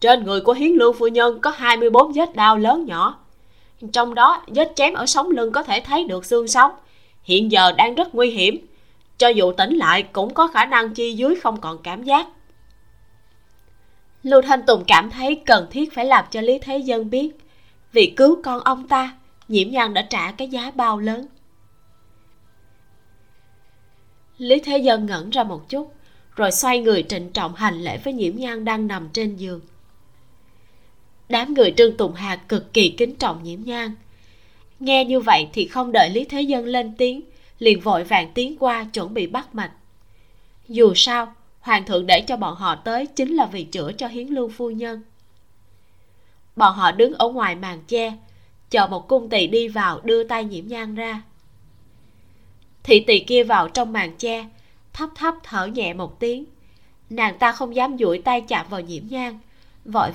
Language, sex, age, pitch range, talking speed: Vietnamese, female, 20-39, 175-255 Hz, 185 wpm